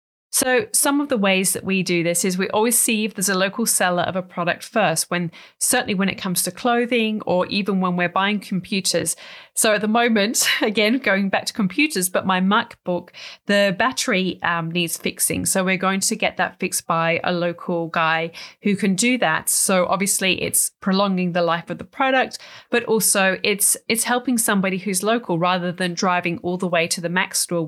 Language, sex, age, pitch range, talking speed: English, female, 30-49, 180-225 Hz, 205 wpm